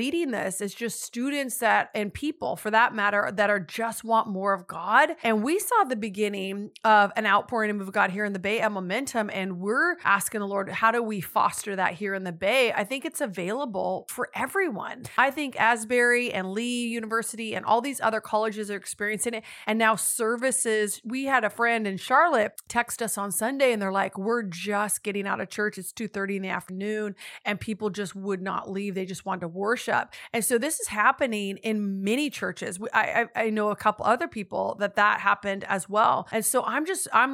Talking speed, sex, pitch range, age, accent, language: 215 wpm, female, 200-235 Hz, 30-49, American, English